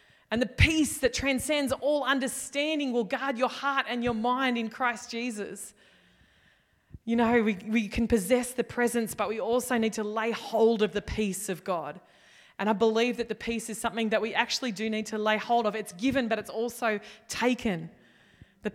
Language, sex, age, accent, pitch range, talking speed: English, female, 20-39, Australian, 205-255 Hz, 195 wpm